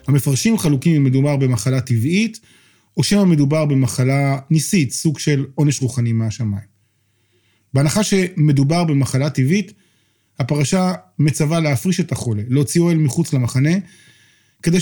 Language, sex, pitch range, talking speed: Hebrew, male, 125-165 Hz, 120 wpm